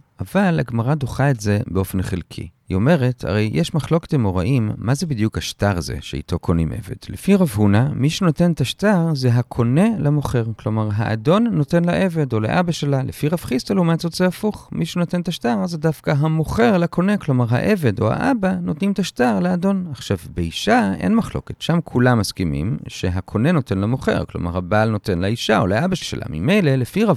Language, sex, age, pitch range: Hebrew, male, 40-59, 105-165 Hz